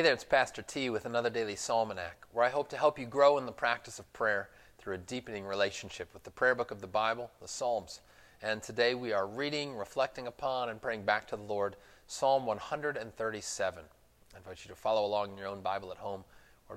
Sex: male